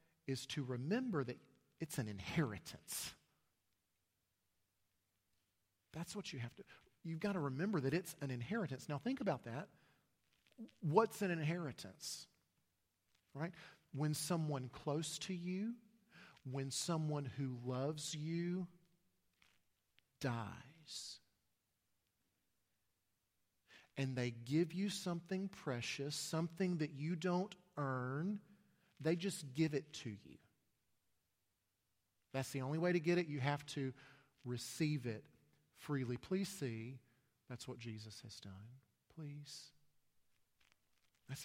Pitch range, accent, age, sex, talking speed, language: 120-180 Hz, American, 40-59, male, 115 wpm, English